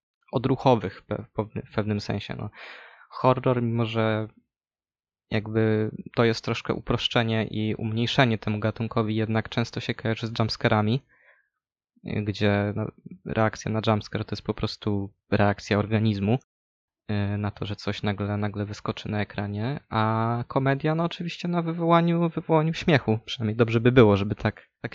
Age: 20-39